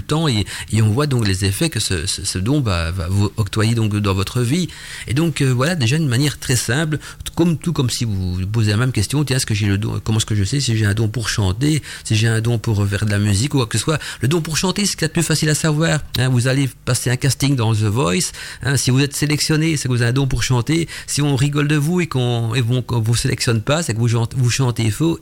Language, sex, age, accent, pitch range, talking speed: French, male, 40-59, French, 110-150 Hz, 290 wpm